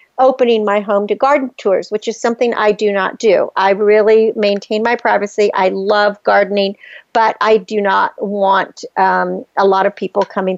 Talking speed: 180 wpm